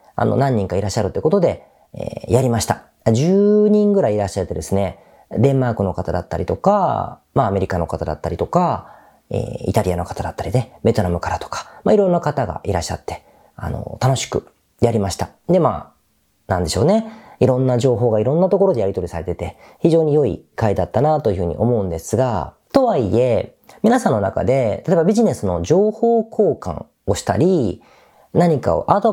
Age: 40-59